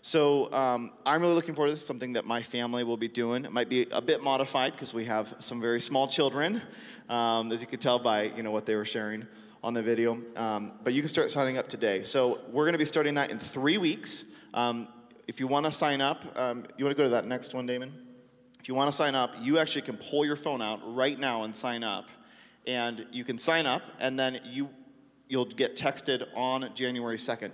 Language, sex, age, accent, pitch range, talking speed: English, male, 30-49, American, 120-145 Hz, 245 wpm